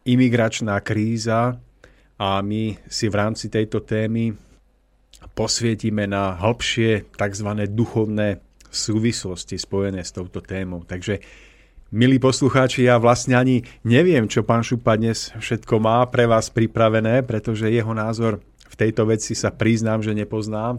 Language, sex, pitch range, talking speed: Slovak, male, 100-115 Hz, 130 wpm